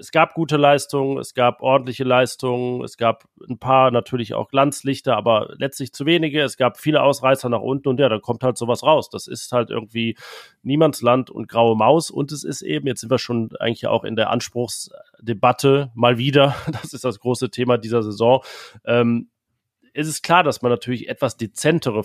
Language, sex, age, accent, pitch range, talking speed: German, male, 30-49, German, 115-135 Hz, 190 wpm